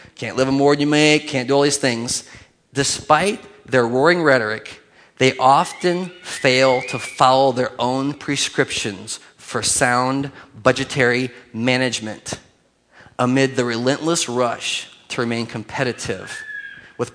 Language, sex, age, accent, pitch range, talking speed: English, male, 30-49, American, 120-145 Hz, 125 wpm